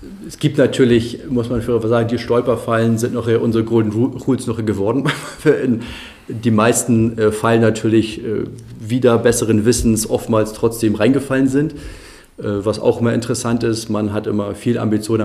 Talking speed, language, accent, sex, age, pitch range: 145 wpm, German, German, male, 40-59, 105-120 Hz